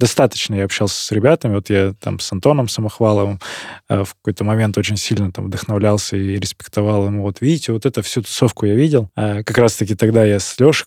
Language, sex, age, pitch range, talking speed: Russian, male, 20-39, 100-125 Hz, 210 wpm